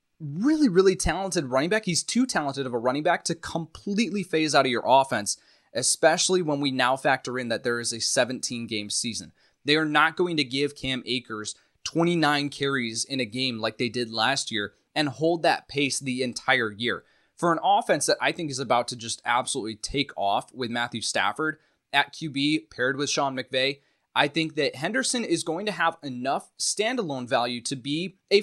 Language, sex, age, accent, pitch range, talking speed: English, male, 20-39, American, 125-175 Hz, 195 wpm